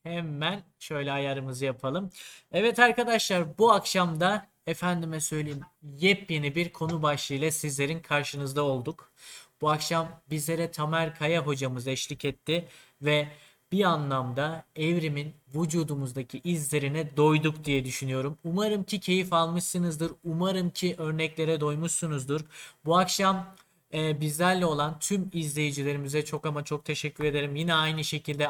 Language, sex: Turkish, male